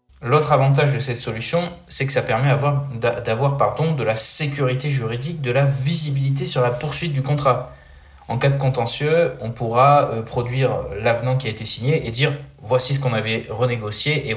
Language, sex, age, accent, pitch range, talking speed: French, male, 20-39, French, 120-145 Hz, 190 wpm